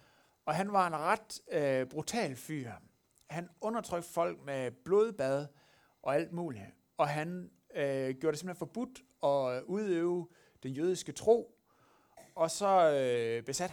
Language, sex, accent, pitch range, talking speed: Danish, male, native, 125-175 Hz, 140 wpm